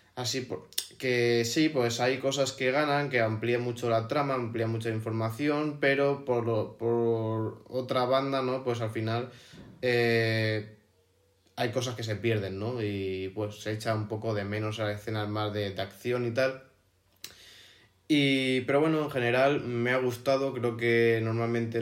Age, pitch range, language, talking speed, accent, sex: 20-39, 110-130 Hz, Spanish, 160 wpm, Spanish, male